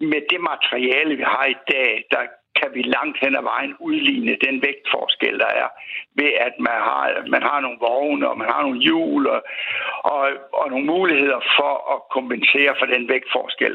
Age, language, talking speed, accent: 60-79, Danish, 190 wpm, native